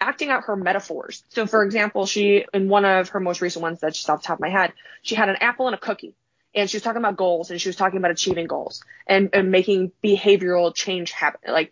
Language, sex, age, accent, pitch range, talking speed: English, female, 20-39, American, 180-220 Hz, 255 wpm